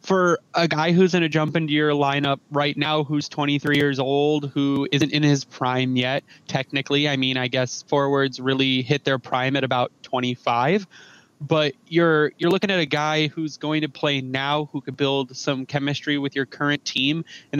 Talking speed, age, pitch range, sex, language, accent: 195 wpm, 20-39, 135-165 Hz, male, English, American